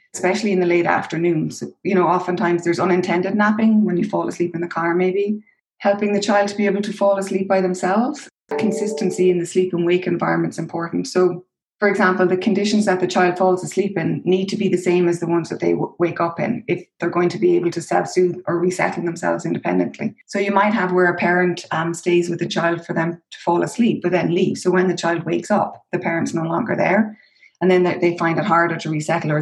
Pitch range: 170-195 Hz